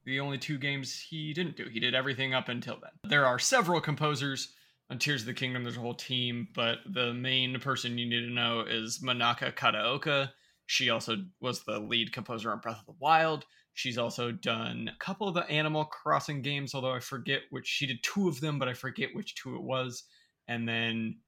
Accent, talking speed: American, 215 wpm